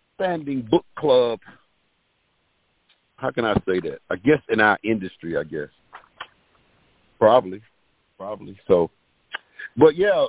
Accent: American